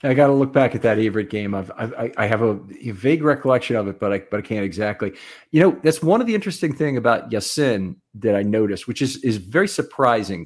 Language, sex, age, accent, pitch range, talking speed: English, male, 40-59, American, 105-140 Hz, 230 wpm